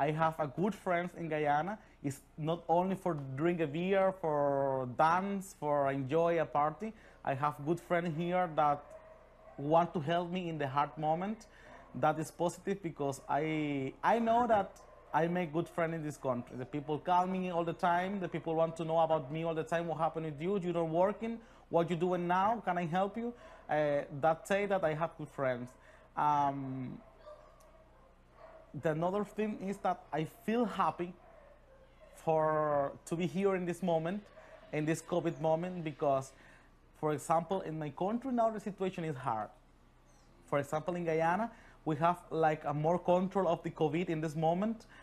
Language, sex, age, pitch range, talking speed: English, male, 30-49, 145-180 Hz, 180 wpm